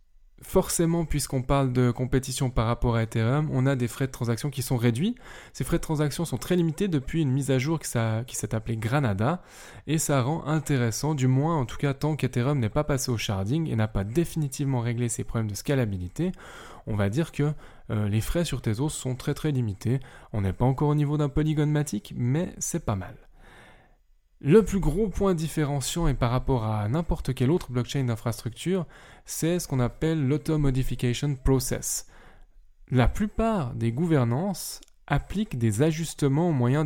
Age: 10-29